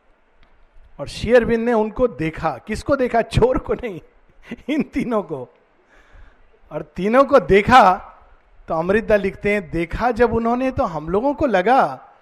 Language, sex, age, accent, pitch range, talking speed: Hindi, male, 50-69, native, 160-230 Hz, 145 wpm